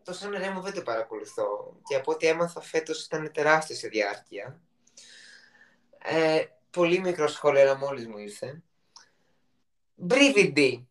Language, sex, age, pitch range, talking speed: Greek, male, 20-39, 145-230 Hz, 115 wpm